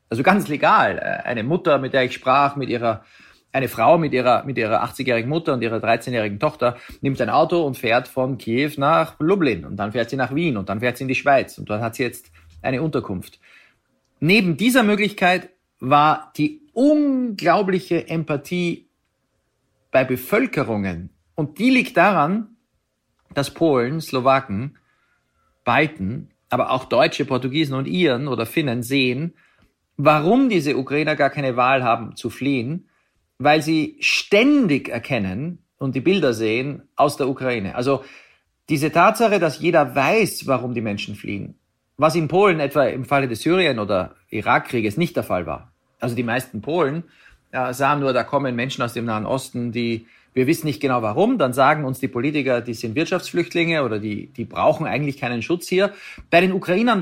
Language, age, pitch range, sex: German, 40-59, 120-170 Hz, male